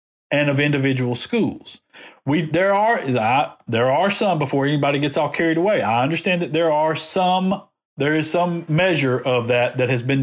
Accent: American